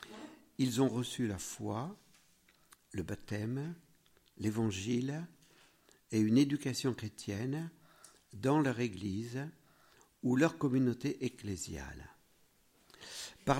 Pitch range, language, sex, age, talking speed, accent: 115-165 Hz, French, male, 50-69, 90 wpm, French